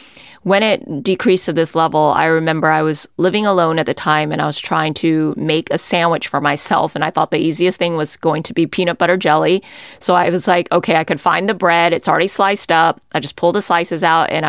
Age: 20-39